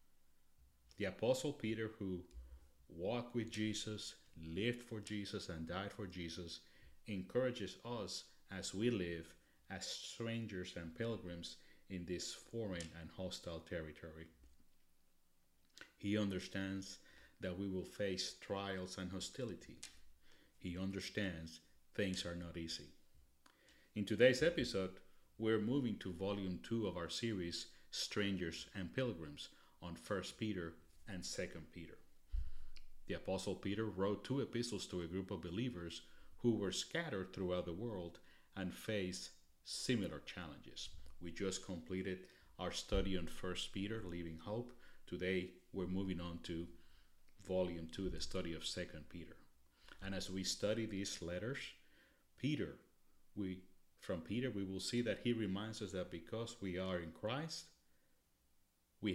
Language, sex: English, male